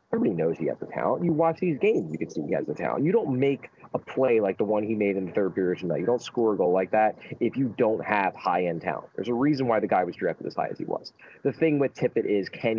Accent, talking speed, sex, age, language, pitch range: American, 300 wpm, male, 30-49, English, 100-130 Hz